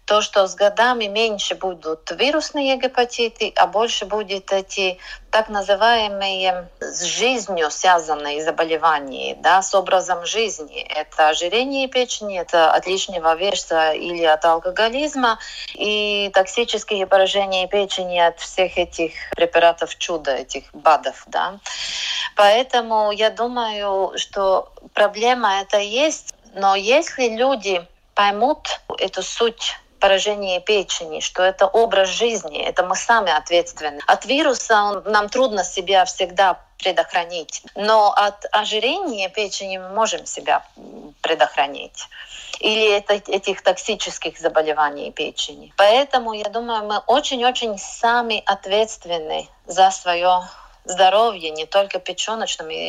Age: 30-49